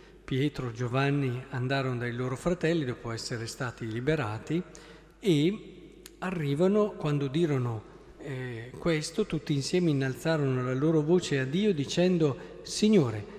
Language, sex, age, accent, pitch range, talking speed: Italian, male, 50-69, native, 125-165 Hz, 120 wpm